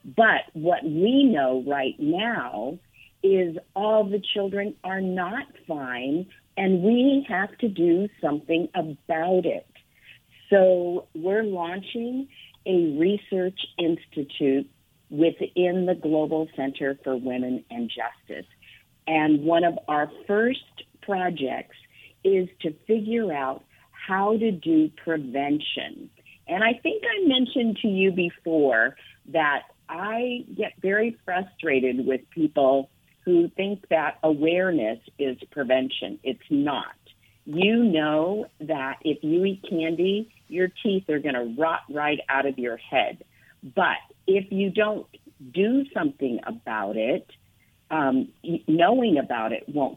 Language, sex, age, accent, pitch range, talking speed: English, female, 50-69, American, 150-210 Hz, 125 wpm